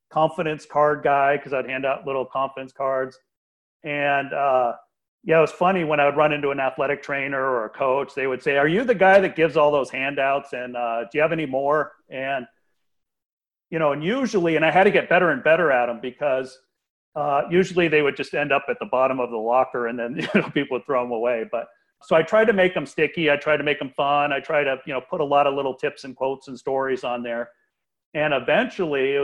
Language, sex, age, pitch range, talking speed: English, male, 40-59, 130-155 Hz, 240 wpm